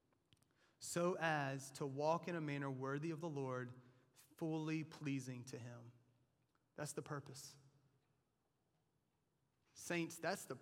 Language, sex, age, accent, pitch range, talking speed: English, male, 30-49, American, 130-155 Hz, 120 wpm